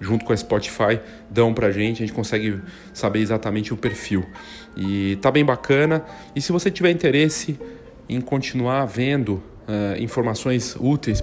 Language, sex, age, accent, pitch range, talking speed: Portuguese, male, 40-59, Brazilian, 115-150 Hz, 155 wpm